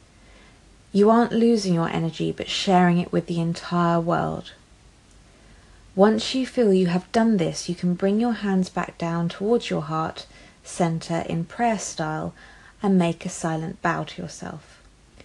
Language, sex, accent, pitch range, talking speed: English, female, British, 165-210 Hz, 155 wpm